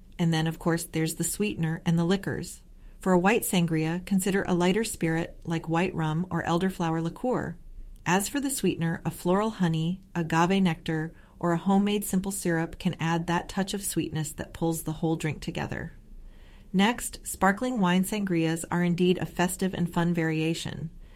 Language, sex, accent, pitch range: English, female, American, 165-200 Hz